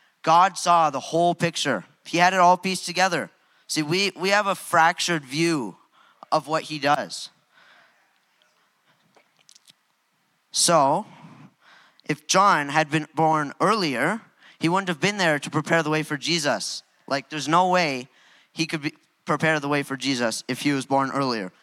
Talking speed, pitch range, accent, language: 160 wpm, 145-170 Hz, American, English